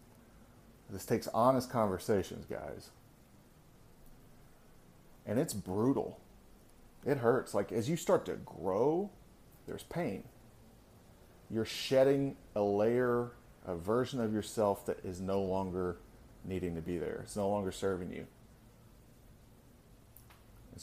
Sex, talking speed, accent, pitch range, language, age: male, 115 wpm, American, 95-120 Hz, English, 30-49